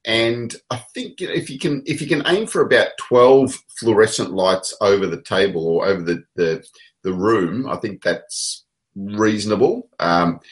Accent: Australian